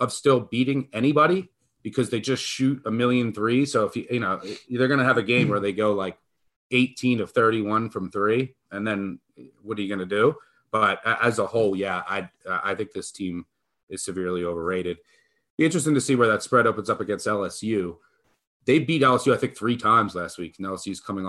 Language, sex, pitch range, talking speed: English, male, 100-150 Hz, 215 wpm